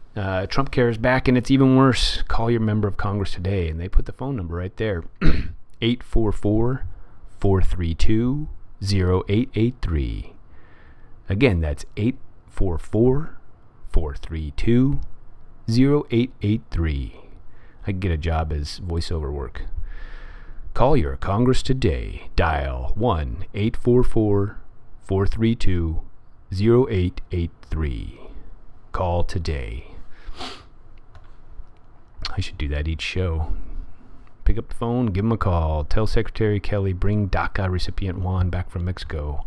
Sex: male